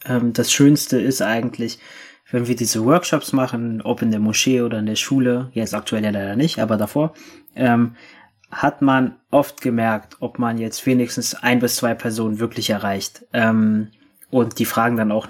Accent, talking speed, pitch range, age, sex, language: German, 175 wpm, 110-125 Hz, 20-39, male, German